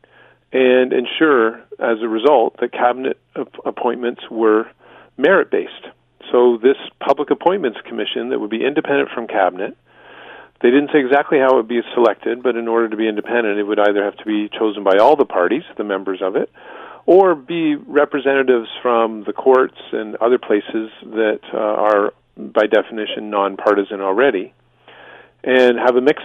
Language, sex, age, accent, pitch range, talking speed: English, male, 40-59, American, 105-130 Hz, 165 wpm